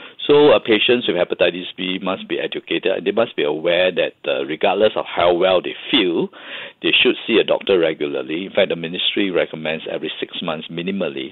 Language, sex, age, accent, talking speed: English, male, 50-69, Malaysian, 195 wpm